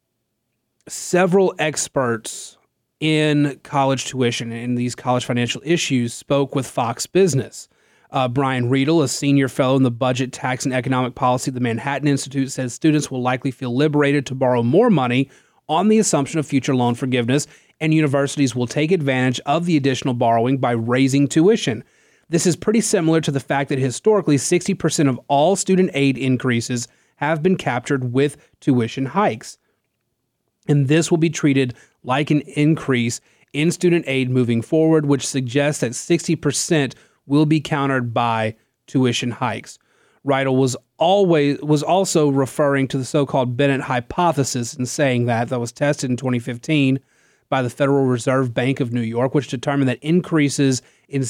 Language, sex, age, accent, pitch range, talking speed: English, male, 30-49, American, 125-150 Hz, 165 wpm